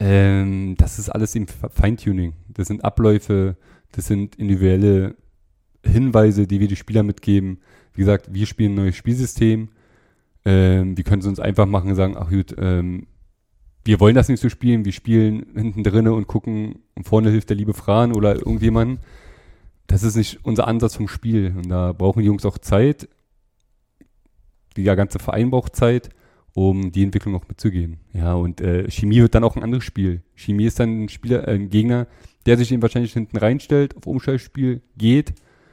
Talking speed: 180 wpm